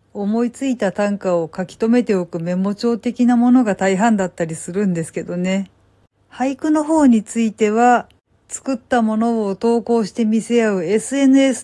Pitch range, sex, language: 180-245 Hz, female, Japanese